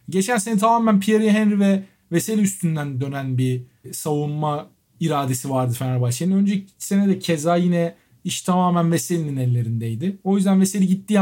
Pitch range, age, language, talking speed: 165-200 Hz, 50-69, Turkish, 145 wpm